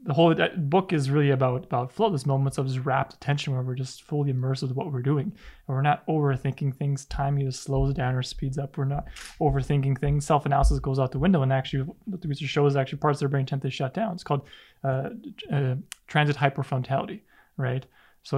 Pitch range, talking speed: 135-160 Hz, 220 wpm